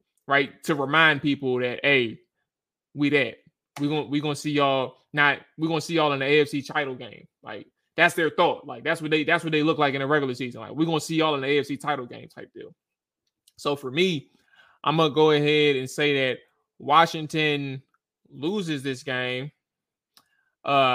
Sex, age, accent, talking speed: male, 20-39, American, 200 wpm